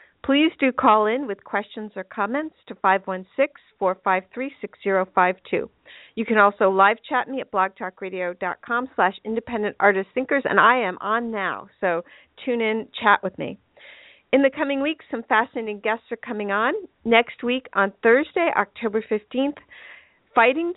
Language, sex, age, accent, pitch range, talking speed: English, female, 50-69, American, 200-255 Hz, 140 wpm